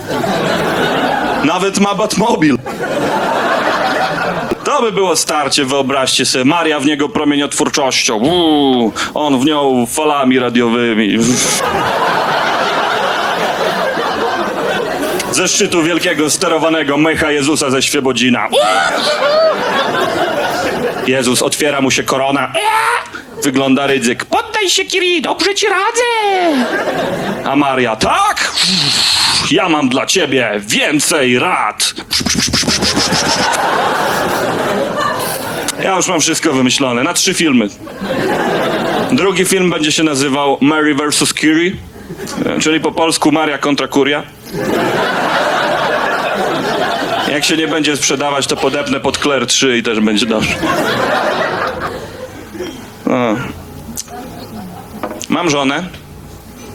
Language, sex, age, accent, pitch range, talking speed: Polish, male, 30-49, native, 135-200 Hz, 90 wpm